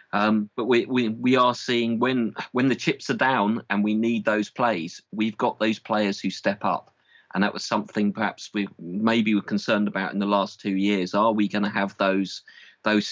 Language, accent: English, British